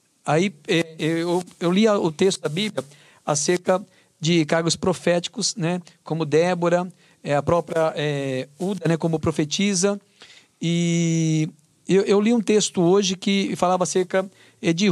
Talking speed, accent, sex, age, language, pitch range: 120 wpm, Brazilian, male, 50-69, Portuguese, 150-185 Hz